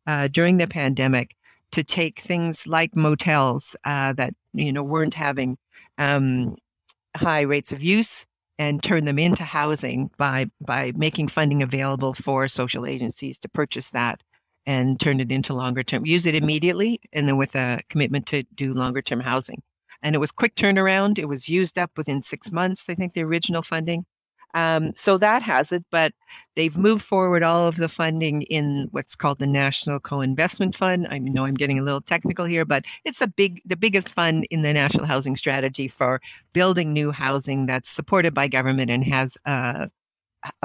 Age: 50-69